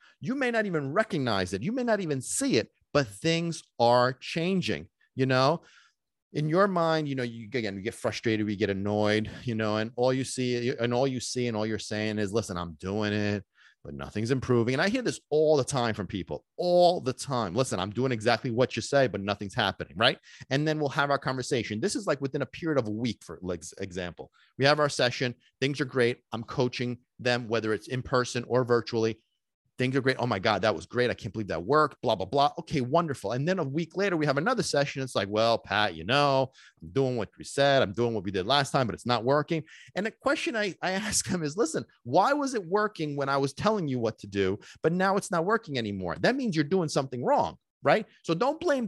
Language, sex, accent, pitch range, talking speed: English, male, American, 115-165 Hz, 240 wpm